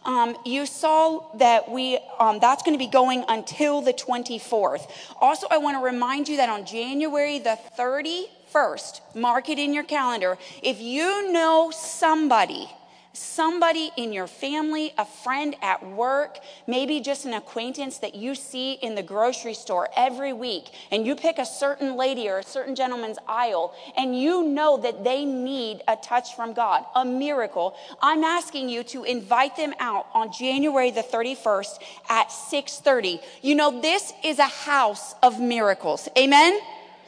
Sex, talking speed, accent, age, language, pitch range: female, 160 wpm, American, 30-49, English, 240-315 Hz